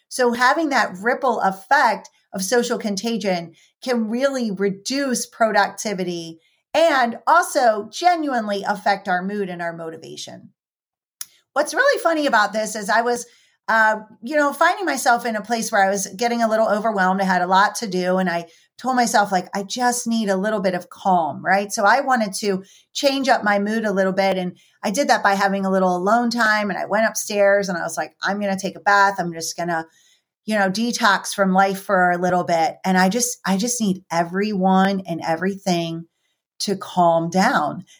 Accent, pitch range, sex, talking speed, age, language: American, 185-230 Hz, female, 195 wpm, 40-59, English